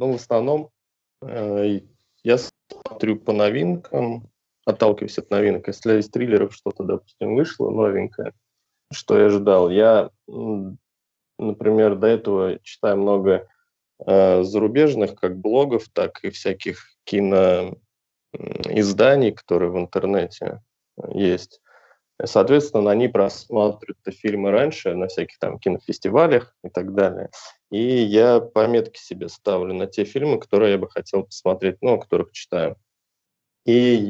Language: Russian